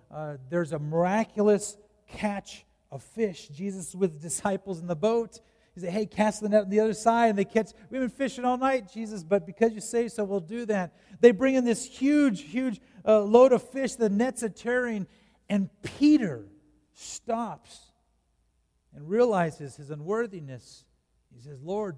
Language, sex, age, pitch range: English, male, 50-69, 145-210 Hz